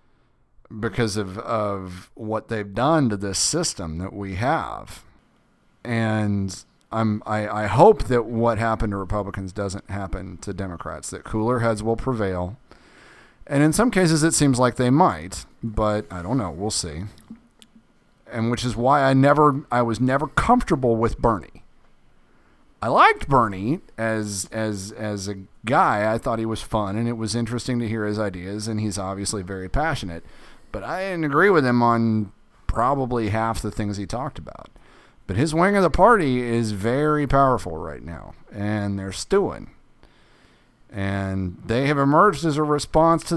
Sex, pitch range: male, 100-140 Hz